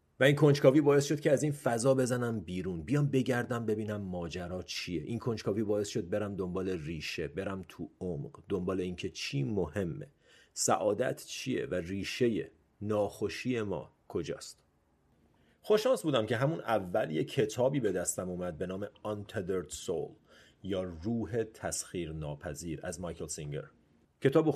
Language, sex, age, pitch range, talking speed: Persian, male, 40-59, 90-125 Hz, 140 wpm